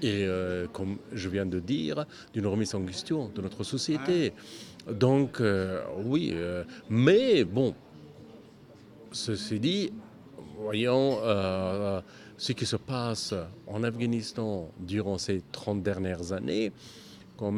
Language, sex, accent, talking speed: French, male, French, 125 wpm